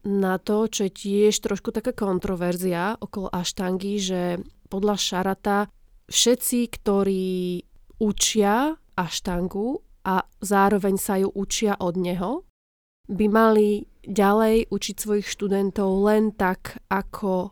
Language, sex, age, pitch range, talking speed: Slovak, female, 20-39, 180-205 Hz, 115 wpm